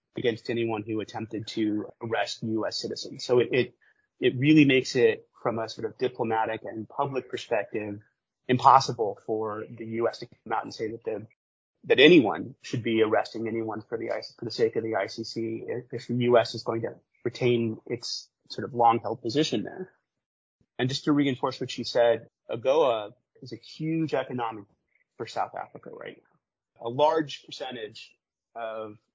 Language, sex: English, male